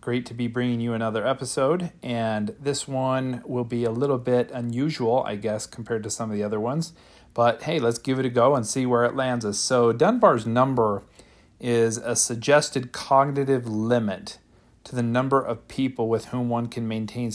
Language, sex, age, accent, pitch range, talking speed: English, male, 40-59, American, 115-130 Hz, 195 wpm